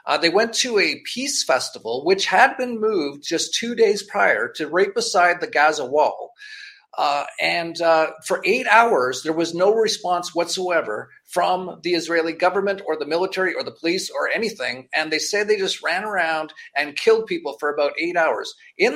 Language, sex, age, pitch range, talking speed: English, male, 40-59, 160-245 Hz, 185 wpm